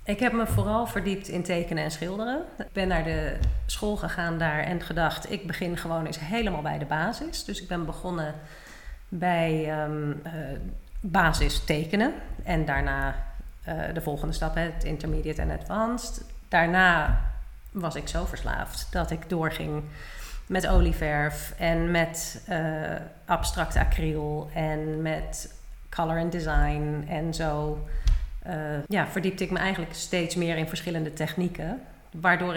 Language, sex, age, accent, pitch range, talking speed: Dutch, female, 40-59, Dutch, 155-180 Hz, 140 wpm